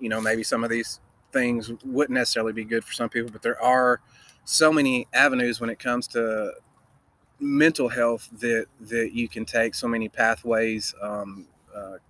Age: 30-49